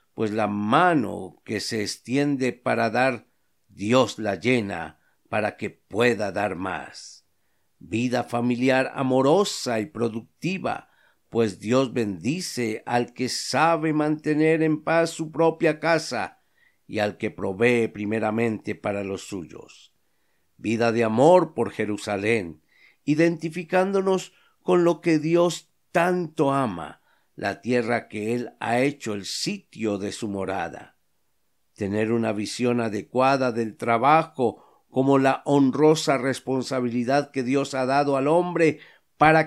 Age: 50-69